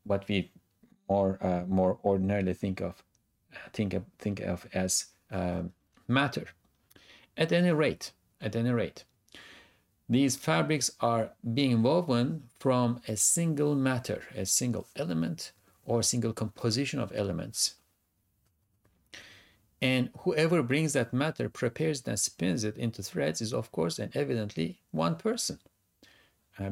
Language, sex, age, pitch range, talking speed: English, male, 50-69, 95-125 Hz, 130 wpm